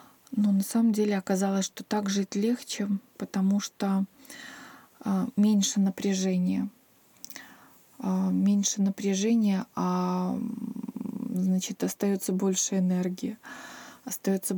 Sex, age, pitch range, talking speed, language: female, 20-39, 185-215 Hz, 85 wpm, Russian